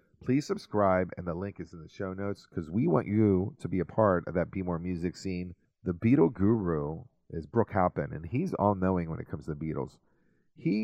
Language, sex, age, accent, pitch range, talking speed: English, male, 40-59, American, 90-115 Hz, 220 wpm